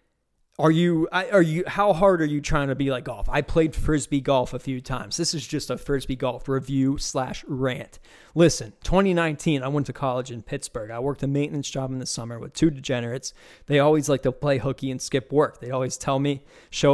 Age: 20-39